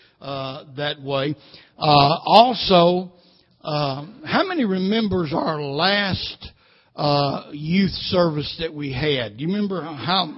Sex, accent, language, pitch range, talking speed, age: male, American, English, 150-195 Hz, 120 wpm, 60-79